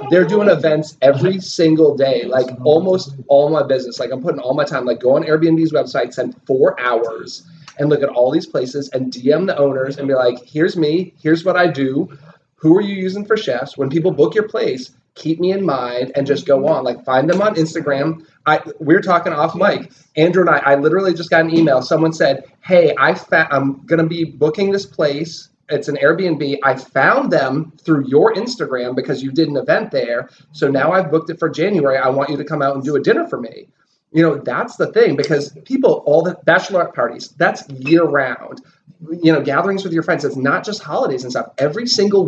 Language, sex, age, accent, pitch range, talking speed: English, male, 30-49, American, 140-170 Hz, 220 wpm